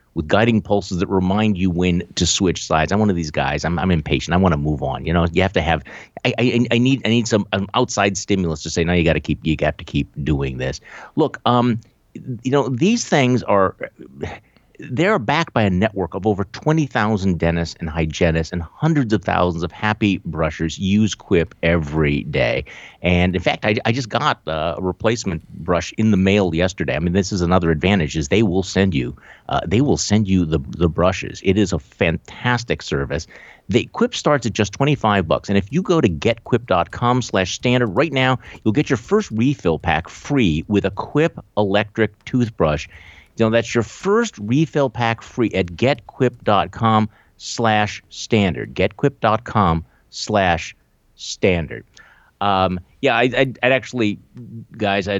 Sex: male